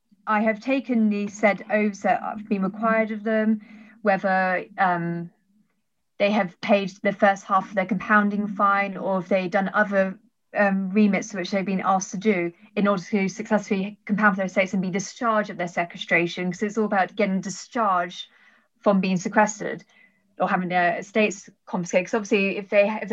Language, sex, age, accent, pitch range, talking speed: English, female, 20-39, British, 195-220 Hz, 185 wpm